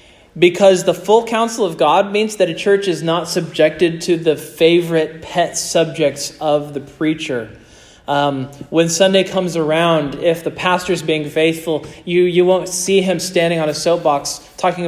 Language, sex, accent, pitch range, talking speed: English, male, American, 150-210 Hz, 170 wpm